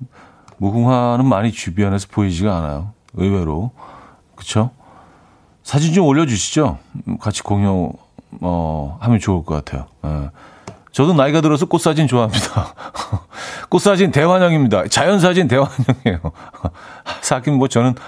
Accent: native